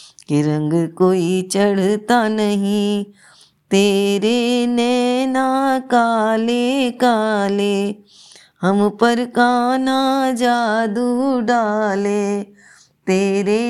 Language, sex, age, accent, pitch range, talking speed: Hindi, female, 20-39, native, 180-225 Hz, 65 wpm